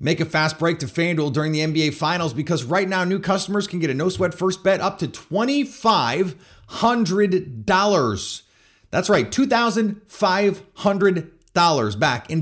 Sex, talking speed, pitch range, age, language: male, 140 wpm, 135-195 Hz, 30-49, English